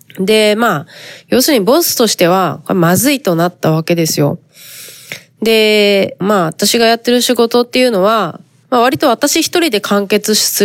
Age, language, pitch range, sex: 20-39, Japanese, 175-225 Hz, female